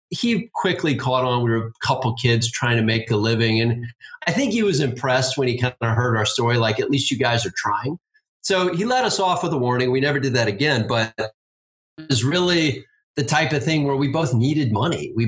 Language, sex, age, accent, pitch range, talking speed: English, male, 30-49, American, 115-140 Hz, 240 wpm